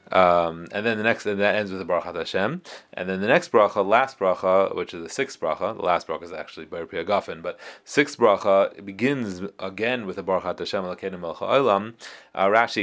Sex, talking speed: male, 215 wpm